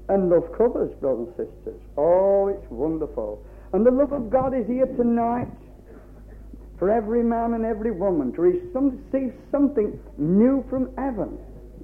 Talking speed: 150 wpm